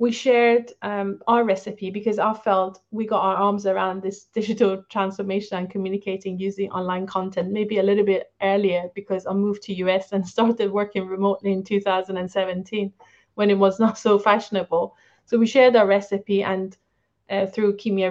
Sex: female